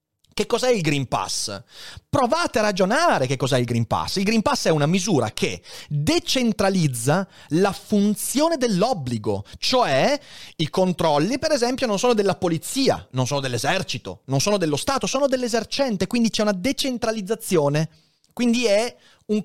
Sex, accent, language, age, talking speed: male, native, Italian, 30-49, 150 wpm